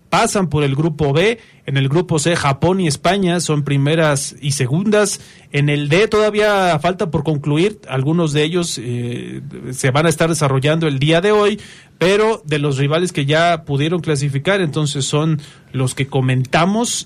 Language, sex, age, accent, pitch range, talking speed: Spanish, male, 30-49, Mexican, 145-185 Hz, 170 wpm